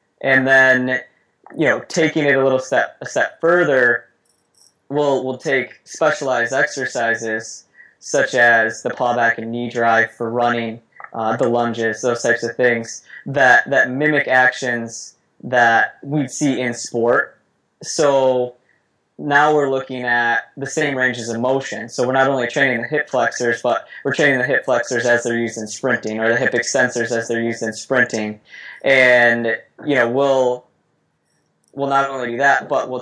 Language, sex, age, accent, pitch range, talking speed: English, male, 20-39, American, 115-135 Hz, 165 wpm